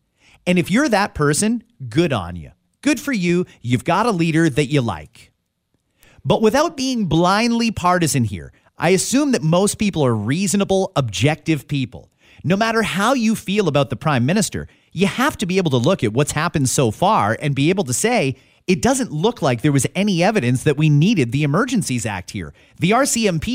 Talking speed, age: 195 wpm, 30-49